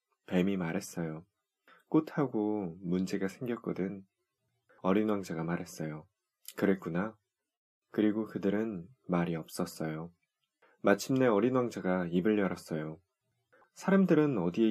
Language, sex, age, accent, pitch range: Korean, male, 20-39, native, 90-120 Hz